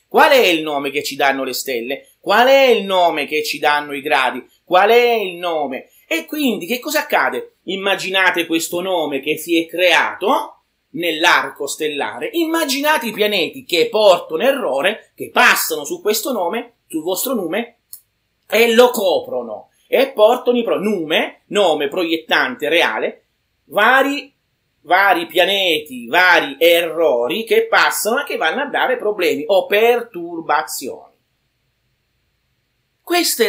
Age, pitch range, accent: 30-49, 170-255 Hz, native